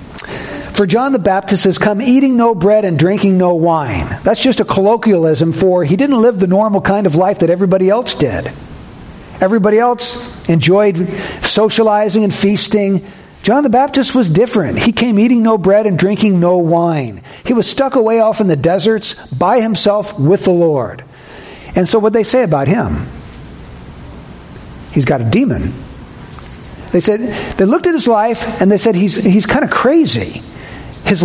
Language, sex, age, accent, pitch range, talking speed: English, male, 60-79, American, 185-240 Hz, 175 wpm